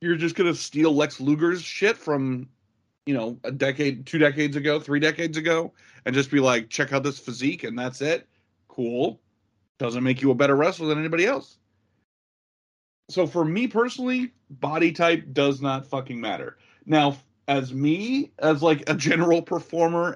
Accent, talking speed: American, 170 wpm